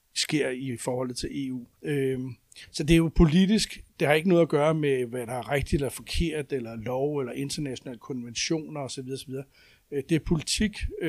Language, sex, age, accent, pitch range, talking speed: Danish, male, 60-79, native, 130-160 Hz, 180 wpm